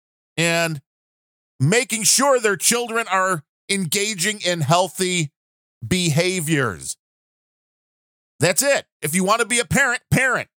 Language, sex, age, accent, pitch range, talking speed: English, male, 40-59, American, 160-220 Hz, 115 wpm